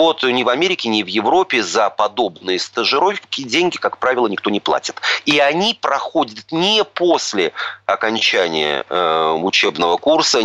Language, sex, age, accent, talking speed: Russian, male, 30-49, native, 140 wpm